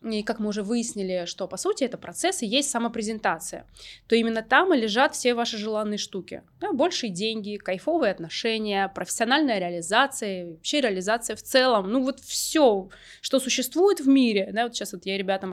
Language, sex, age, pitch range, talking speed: Russian, female, 20-39, 200-260 Hz, 165 wpm